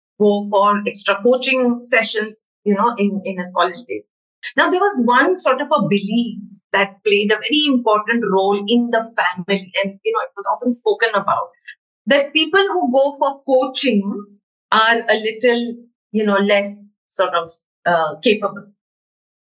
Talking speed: 165 wpm